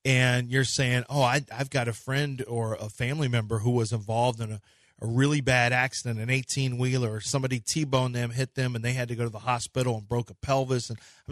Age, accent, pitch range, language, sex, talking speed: 40-59, American, 120-145 Hz, English, male, 235 wpm